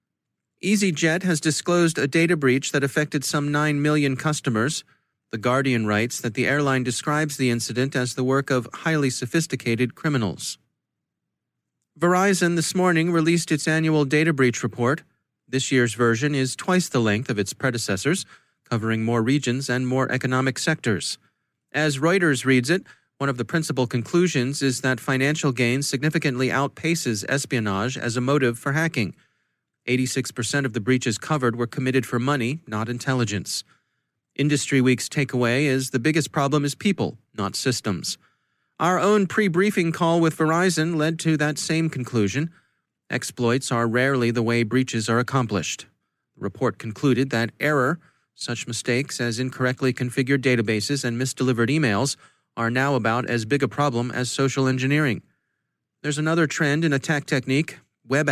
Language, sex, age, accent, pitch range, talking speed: English, male, 30-49, American, 120-150 Hz, 150 wpm